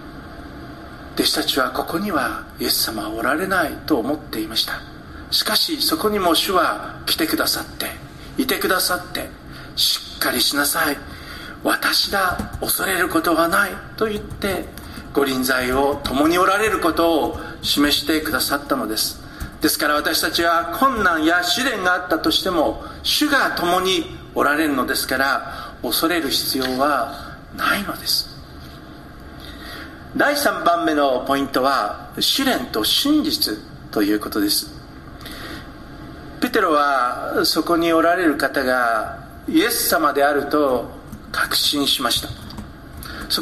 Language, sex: Japanese, male